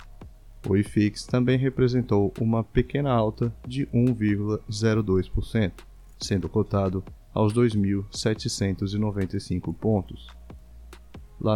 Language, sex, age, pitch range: Portuguese, male, 20-39, 95-115 Hz